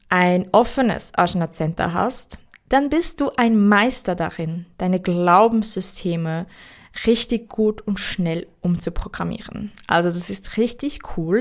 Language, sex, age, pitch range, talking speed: German, female, 20-39, 185-230 Hz, 115 wpm